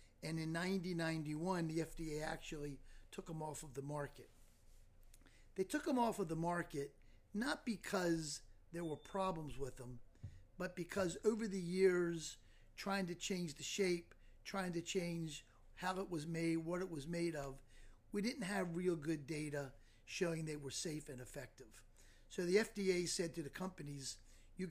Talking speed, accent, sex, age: 165 wpm, American, male, 50-69